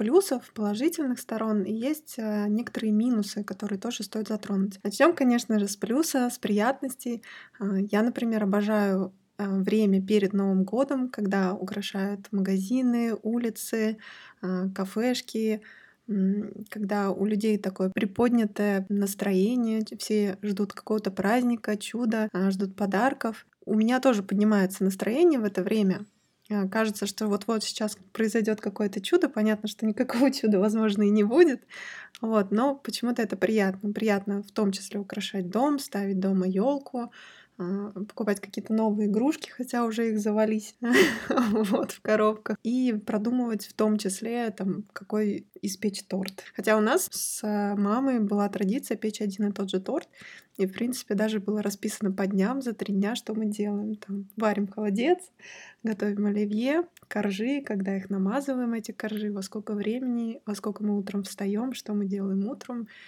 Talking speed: 140 wpm